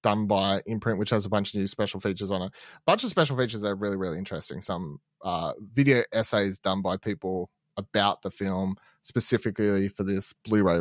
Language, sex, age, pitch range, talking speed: English, male, 30-49, 105-140 Hz, 205 wpm